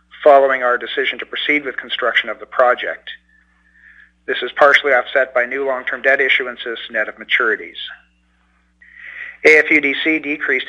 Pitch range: 120-145 Hz